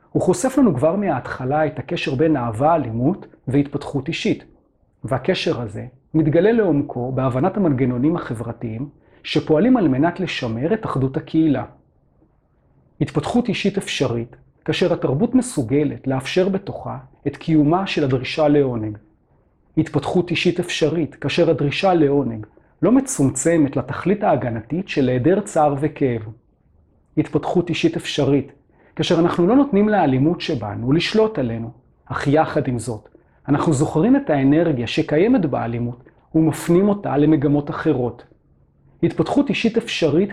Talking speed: 120 wpm